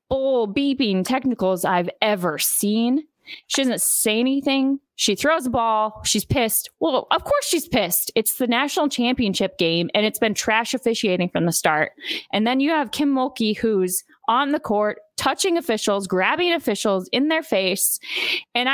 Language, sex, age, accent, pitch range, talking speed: English, female, 20-39, American, 195-250 Hz, 165 wpm